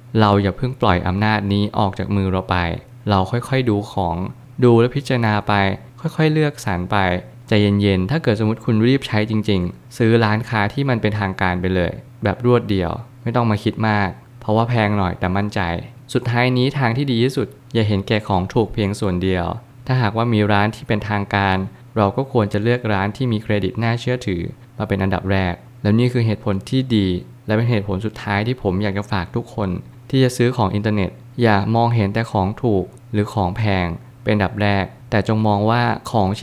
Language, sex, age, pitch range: Thai, male, 20-39, 100-120 Hz